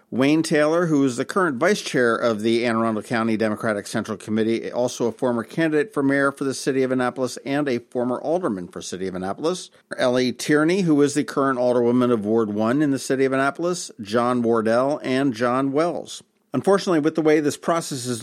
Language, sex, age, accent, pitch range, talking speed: English, male, 50-69, American, 110-140 Hz, 205 wpm